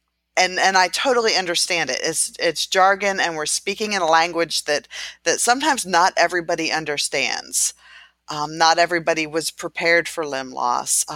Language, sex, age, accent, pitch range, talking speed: English, female, 40-59, American, 165-205 Hz, 160 wpm